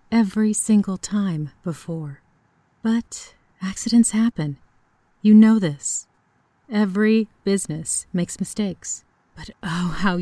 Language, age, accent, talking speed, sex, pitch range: English, 40-59, American, 100 wpm, female, 165-210 Hz